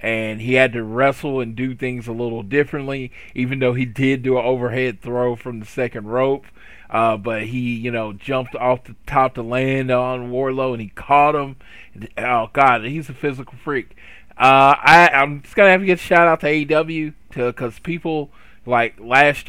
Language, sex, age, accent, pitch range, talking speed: English, male, 20-39, American, 120-145 Hz, 205 wpm